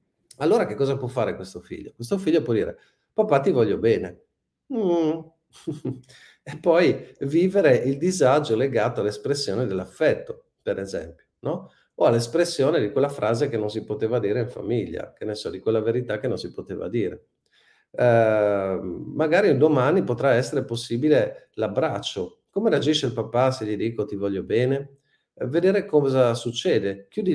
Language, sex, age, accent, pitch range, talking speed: Italian, male, 50-69, native, 105-160 Hz, 160 wpm